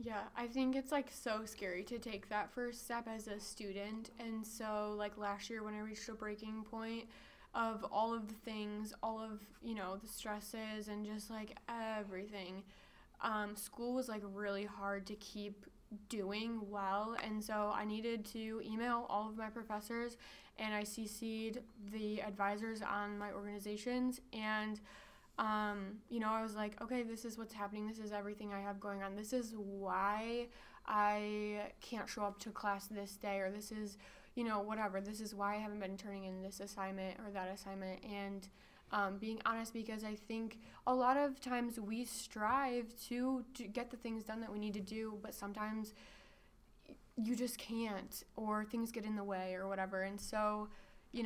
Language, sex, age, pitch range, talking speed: English, female, 10-29, 205-230 Hz, 185 wpm